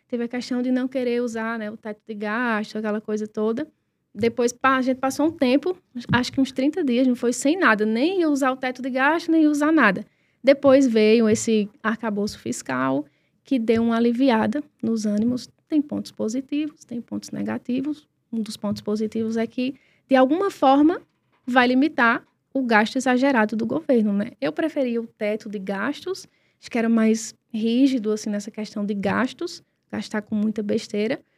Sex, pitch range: female, 220-275 Hz